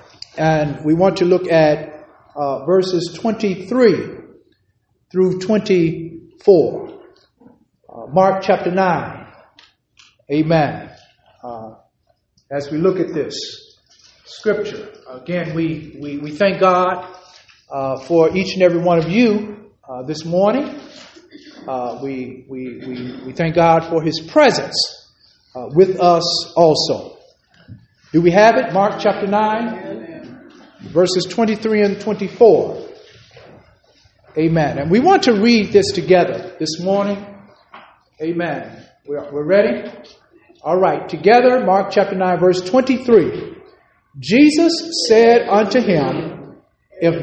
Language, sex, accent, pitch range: English, male, American, 165-240 Hz